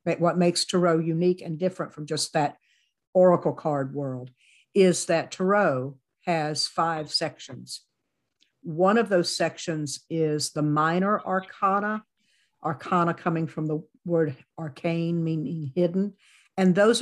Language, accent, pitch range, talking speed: English, American, 140-185 Hz, 125 wpm